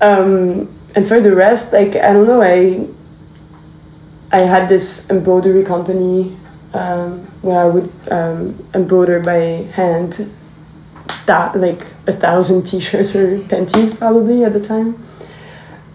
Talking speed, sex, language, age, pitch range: 130 wpm, female, English, 20-39, 175-200 Hz